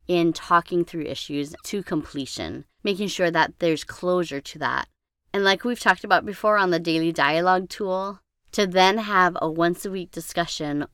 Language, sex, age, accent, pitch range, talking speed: English, female, 30-49, American, 155-200 Hz, 175 wpm